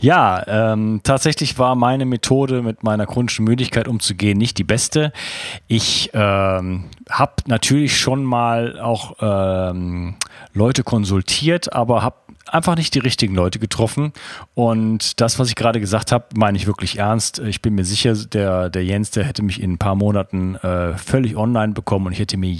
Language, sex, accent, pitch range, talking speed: German, male, German, 100-125 Hz, 175 wpm